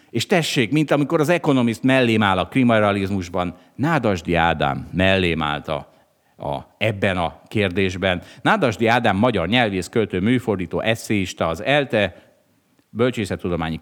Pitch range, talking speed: 85-125 Hz, 125 wpm